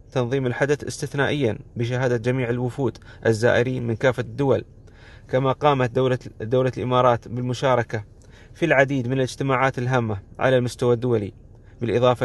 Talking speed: 120 wpm